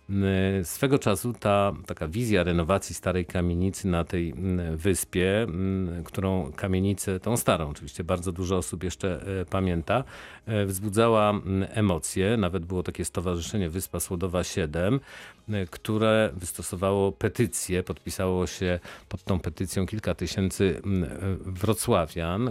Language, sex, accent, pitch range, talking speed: Polish, male, native, 90-105 Hz, 110 wpm